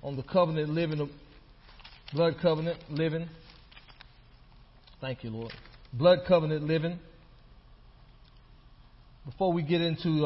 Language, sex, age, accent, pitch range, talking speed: English, male, 40-59, American, 130-150 Hz, 100 wpm